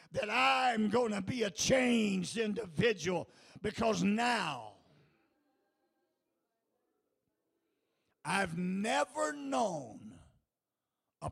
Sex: male